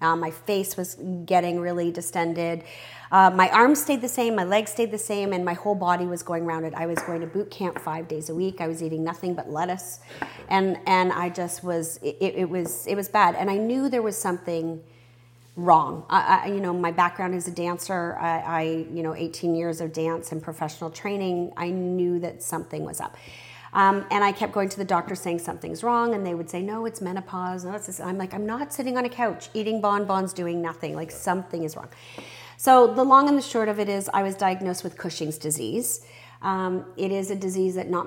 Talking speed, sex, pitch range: 220 wpm, female, 165-195 Hz